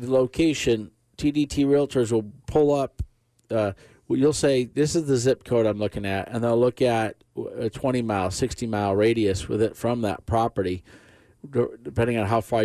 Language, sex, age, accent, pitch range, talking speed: English, male, 40-59, American, 105-135 Hz, 170 wpm